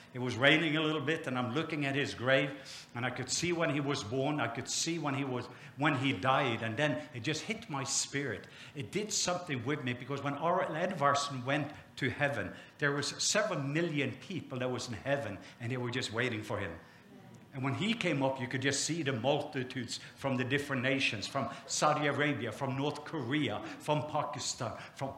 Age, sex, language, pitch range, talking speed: 60-79, male, English, 130-160 Hz, 210 wpm